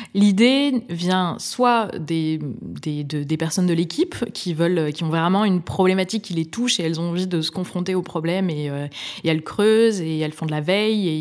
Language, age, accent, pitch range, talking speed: French, 20-39, French, 160-195 Hz, 220 wpm